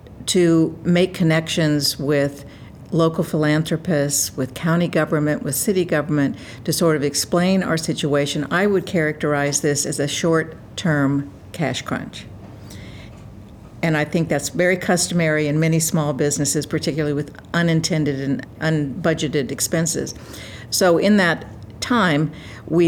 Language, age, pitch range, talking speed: English, 60-79, 140-170 Hz, 125 wpm